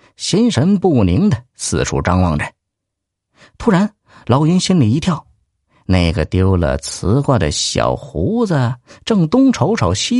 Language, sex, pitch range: Chinese, male, 95-160 Hz